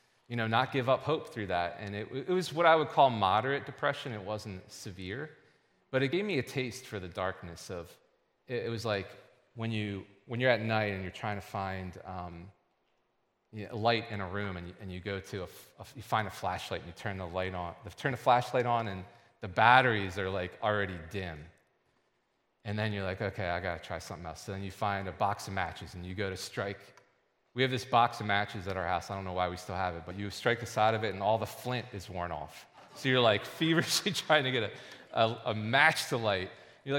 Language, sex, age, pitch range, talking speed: English, male, 30-49, 95-130 Hz, 245 wpm